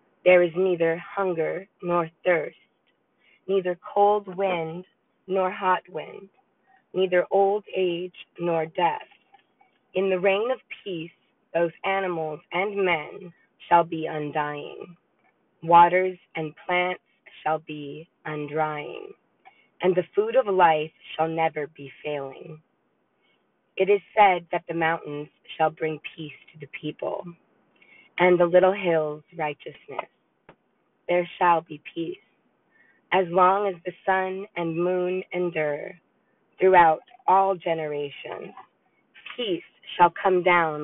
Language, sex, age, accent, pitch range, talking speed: English, female, 20-39, American, 160-190 Hz, 120 wpm